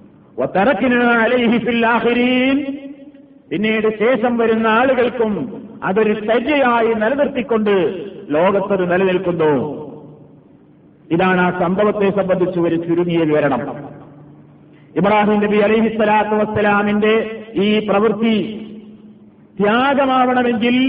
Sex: male